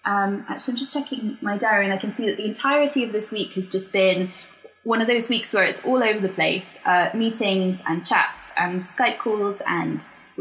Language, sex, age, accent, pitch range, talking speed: English, female, 10-29, British, 190-255 Hz, 225 wpm